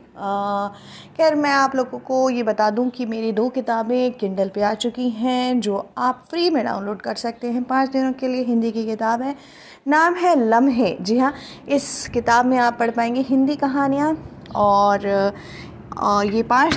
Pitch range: 215-265 Hz